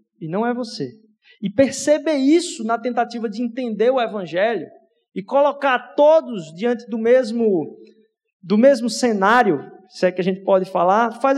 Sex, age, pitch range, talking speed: male, 20-39, 220-295 Hz, 155 wpm